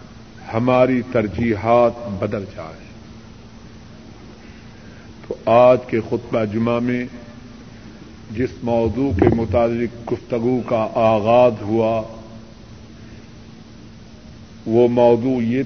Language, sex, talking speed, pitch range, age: Urdu, male, 80 wpm, 110-130 Hz, 50-69